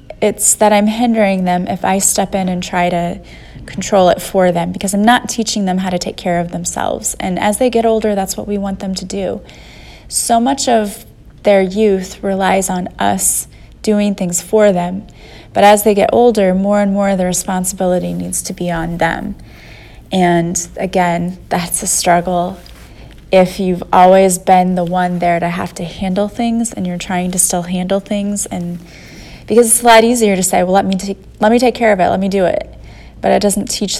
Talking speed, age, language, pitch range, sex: 205 wpm, 20-39, English, 175-200 Hz, female